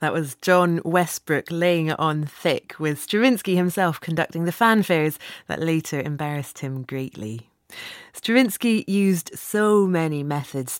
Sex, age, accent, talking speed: female, 30-49, British, 130 wpm